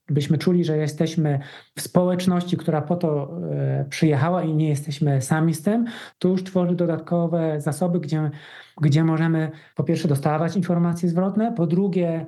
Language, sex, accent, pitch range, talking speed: Polish, male, native, 160-185 Hz, 155 wpm